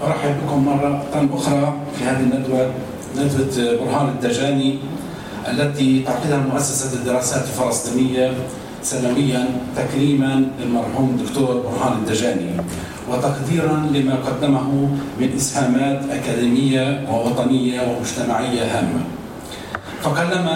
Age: 40-59